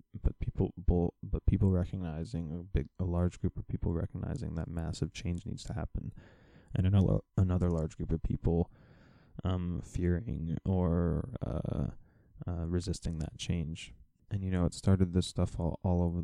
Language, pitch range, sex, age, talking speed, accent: English, 85-95 Hz, male, 20-39, 170 wpm, American